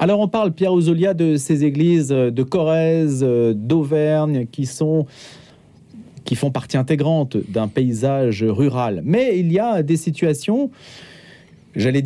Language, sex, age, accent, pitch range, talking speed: French, male, 40-59, French, 130-190 Hz, 135 wpm